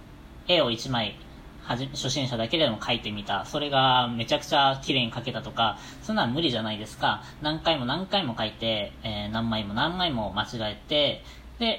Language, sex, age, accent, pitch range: Japanese, female, 20-39, native, 115-180 Hz